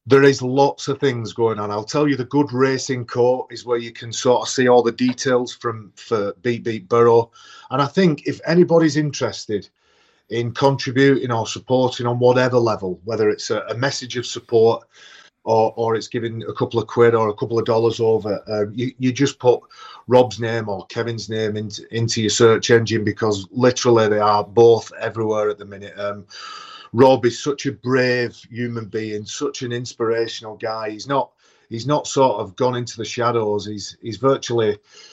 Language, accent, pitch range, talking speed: English, British, 110-125 Hz, 190 wpm